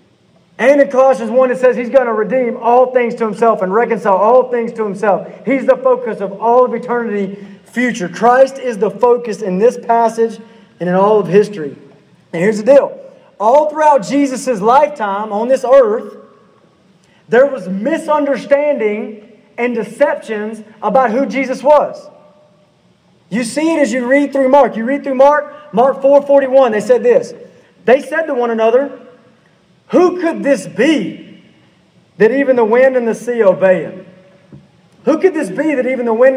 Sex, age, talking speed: male, 30-49, 175 wpm